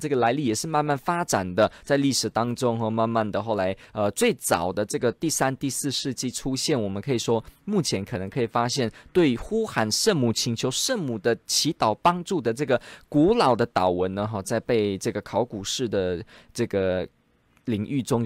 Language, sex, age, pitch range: Chinese, male, 20-39, 115-170 Hz